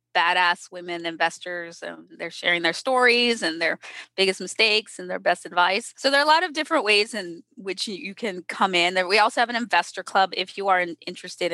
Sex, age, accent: female, 20-39, American